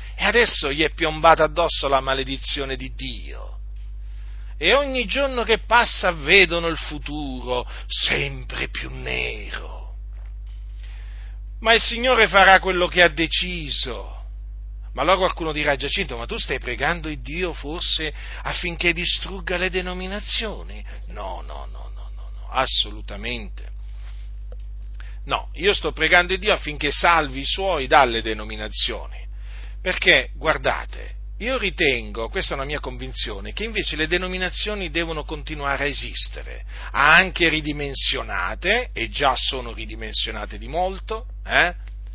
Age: 40-59